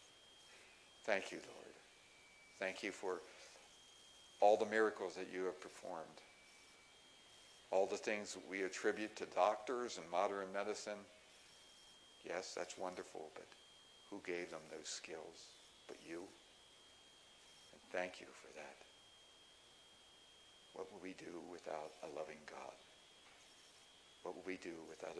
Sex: male